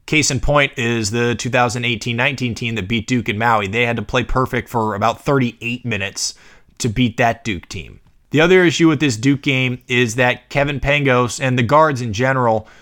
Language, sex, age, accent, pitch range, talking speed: English, male, 20-39, American, 115-140 Hz, 195 wpm